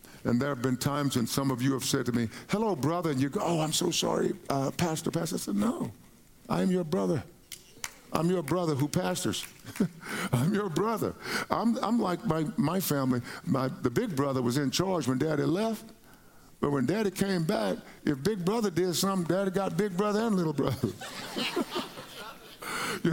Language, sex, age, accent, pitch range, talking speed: English, male, 60-79, American, 130-185 Hz, 190 wpm